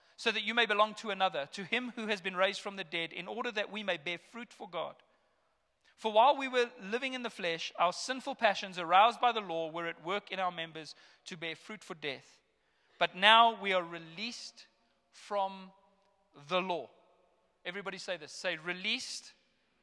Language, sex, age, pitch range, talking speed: English, male, 40-59, 150-200 Hz, 195 wpm